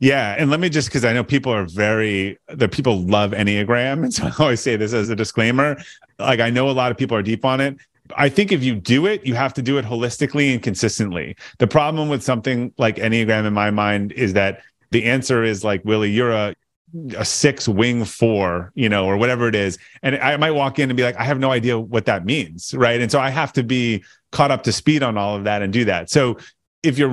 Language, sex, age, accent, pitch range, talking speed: English, male, 30-49, American, 105-135 Hz, 250 wpm